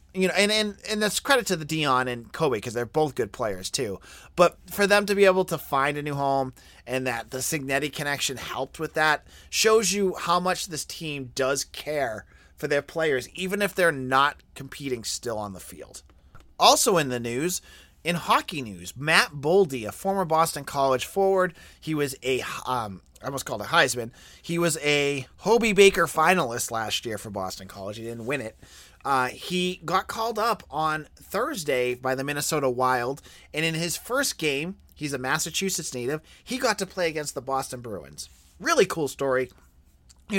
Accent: American